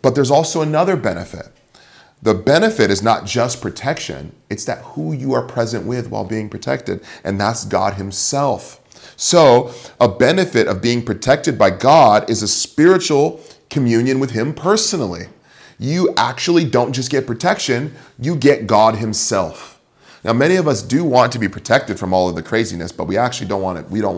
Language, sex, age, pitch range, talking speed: English, male, 30-49, 100-130 Hz, 180 wpm